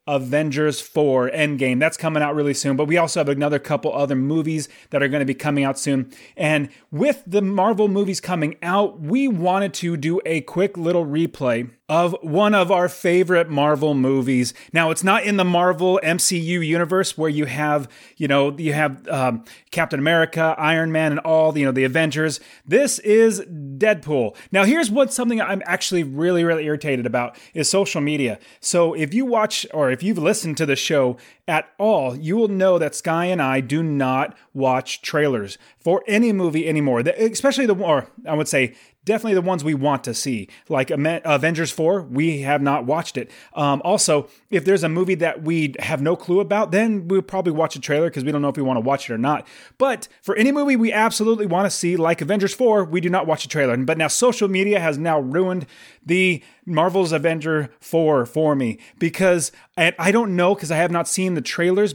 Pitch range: 145-190 Hz